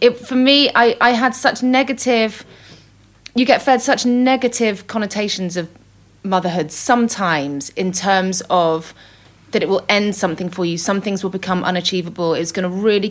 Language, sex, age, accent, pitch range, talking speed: English, female, 30-49, British, 165-215 Hz, 160 wpm